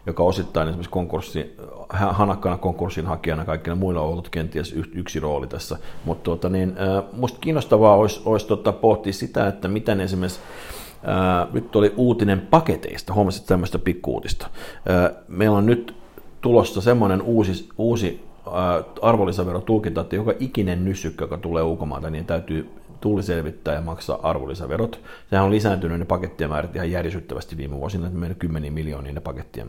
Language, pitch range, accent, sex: Finnish, 80-100 Hz, native, male